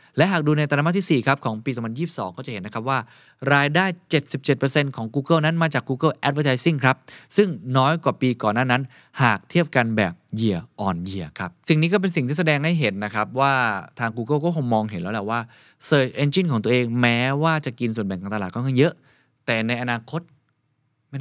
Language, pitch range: Thai, 105-145 Hz